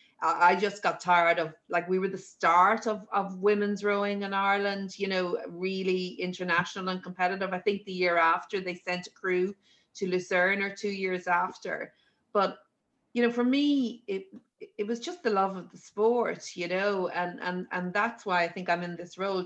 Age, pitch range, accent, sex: 30-49, 175-205 Hz, Irish, female